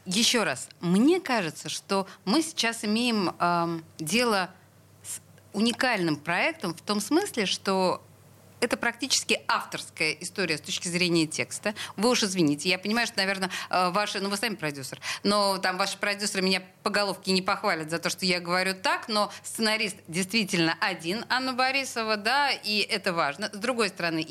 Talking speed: 160 wpm